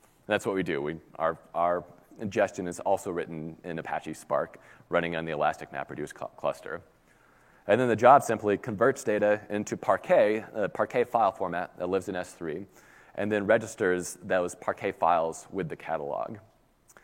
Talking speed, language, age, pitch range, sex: 160 wpm, English, 30-49, 85-110 Hz, male